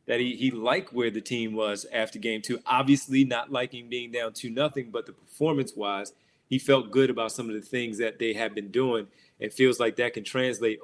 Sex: male